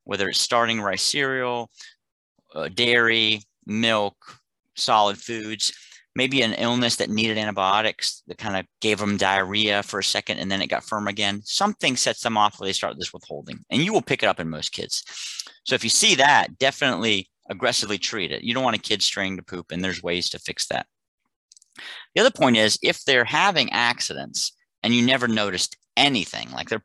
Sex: male